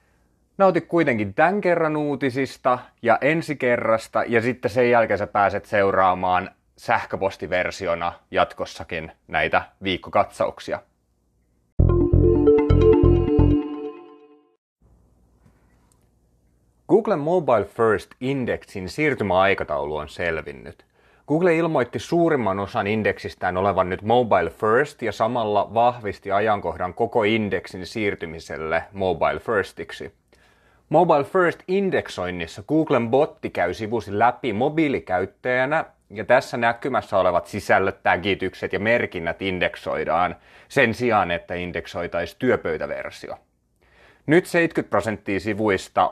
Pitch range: 90-130 Hz